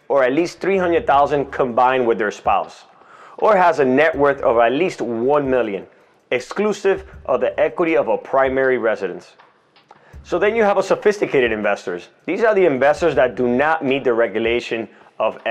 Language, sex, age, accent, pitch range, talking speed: English, male, 30-49, American, 115-170 Hz, 170 wpm